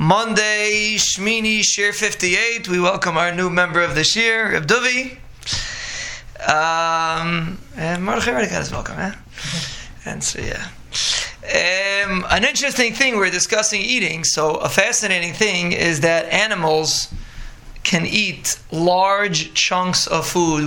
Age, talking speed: 20-39, 120 wpm